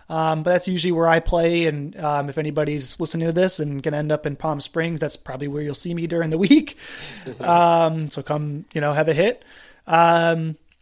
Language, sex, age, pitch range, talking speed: English, male, 20-39, 155-180 Hz, 215 wpm